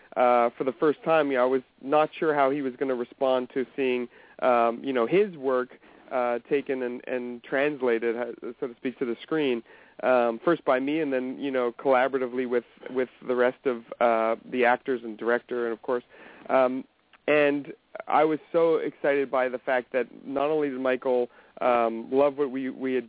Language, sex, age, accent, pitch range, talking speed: English, male, 40-59, American, 120-140 Hz, 200 wpm